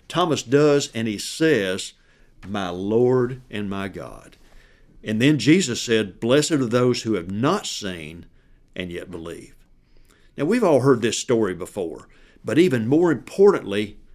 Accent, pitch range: American, 105-135 Hz